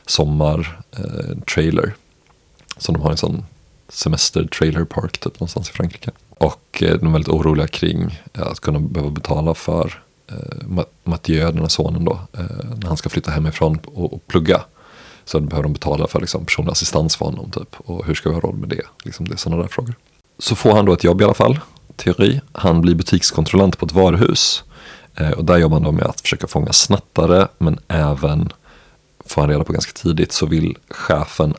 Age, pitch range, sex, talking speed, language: 30-49, 80-95 Hz, male, 200 wpm, Swedish